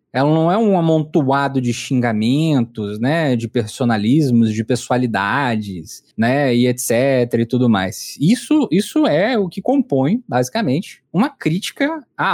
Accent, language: Brazilian, Portuguese